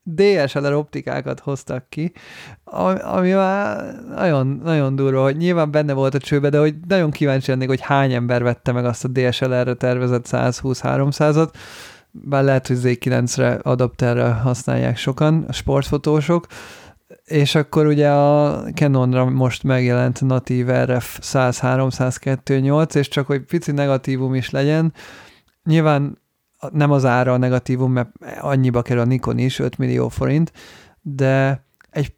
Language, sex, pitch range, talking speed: Hungarian, male, 125-145 Hz, 140 wpm